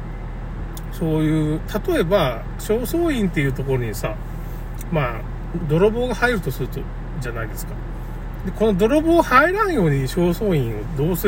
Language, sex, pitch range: Japanese, male, 140-230 Hz